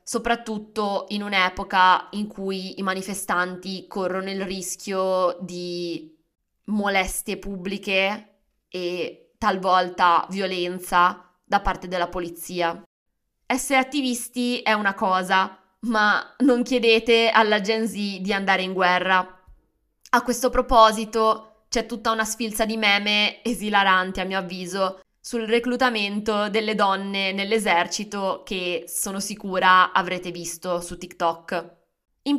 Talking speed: 115 wpm